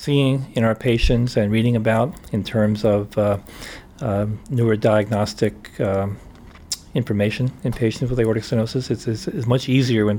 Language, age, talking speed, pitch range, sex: English, 40-59, 160 wpm, 100-115 Hz, male